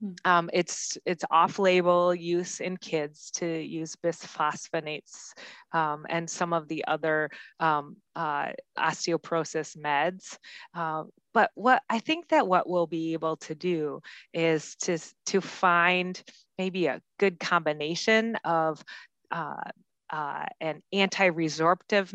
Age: 30-49